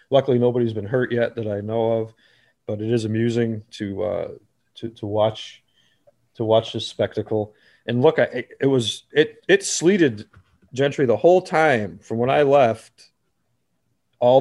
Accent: American